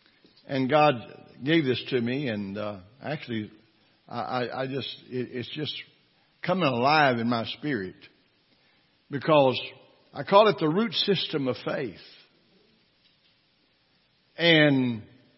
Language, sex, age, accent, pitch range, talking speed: English, male, 60-79, American, 130-165 Hz, 115 wpm